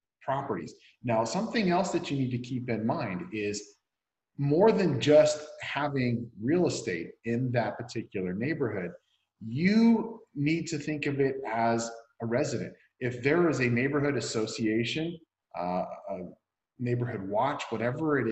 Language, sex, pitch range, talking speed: English, male, 120-150 Hz, 140 wpm